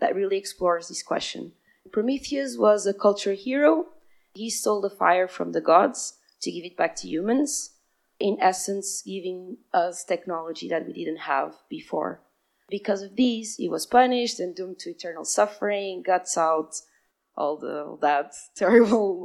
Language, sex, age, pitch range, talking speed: English, female, 20-39, 175-235 Hz, 150 wpm